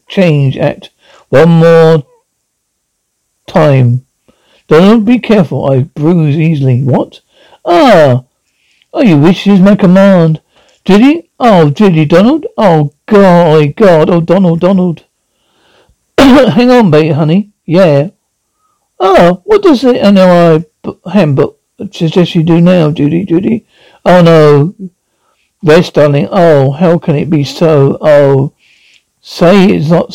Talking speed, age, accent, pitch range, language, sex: 130 wpm, 60-79, British, 155-225 Hz, English, male